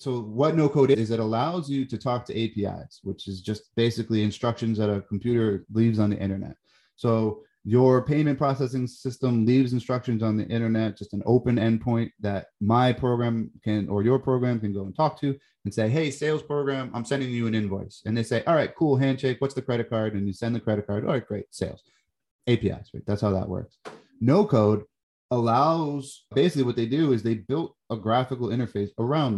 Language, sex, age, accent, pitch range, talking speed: English, male, 30-49, American, 105-130 Hz, 205 wpm